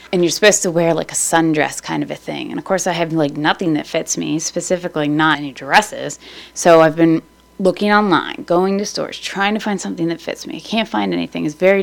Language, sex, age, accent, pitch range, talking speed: English, female, 20-39, American, 150-190 Hz, 240 wpm